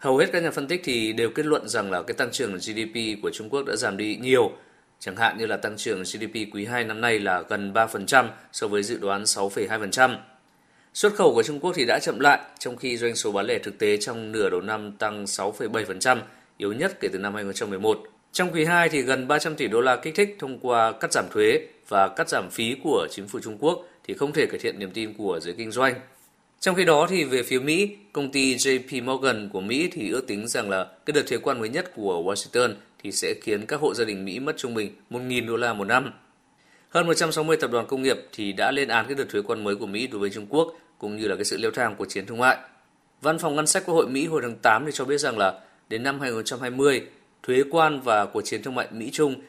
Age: 20-39